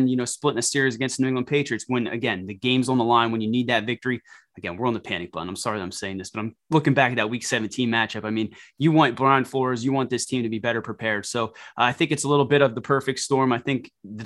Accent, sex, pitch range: American, male, 115-130 Hz